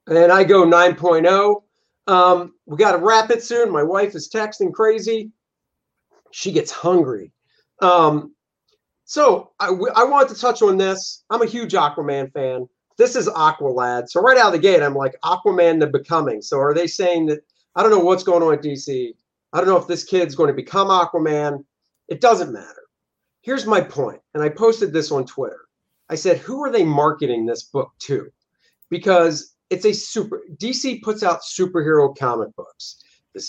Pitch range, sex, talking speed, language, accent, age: 165-250 Hz, male, 180 wpm, English, American, 50-69